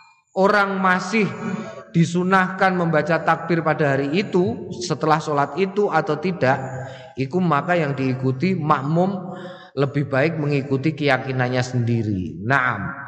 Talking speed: 110 wpm